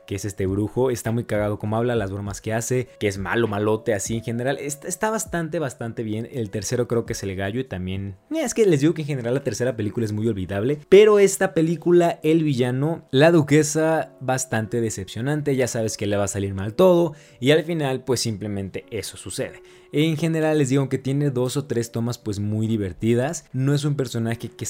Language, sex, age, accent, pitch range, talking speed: Spanish, male, 20-39, Mexican, 105-150 Hz, 215 wpm